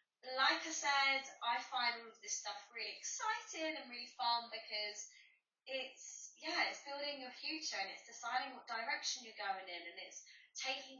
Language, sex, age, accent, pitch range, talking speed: English, female, 20-39, British, 210-270 Hz, 175 wpm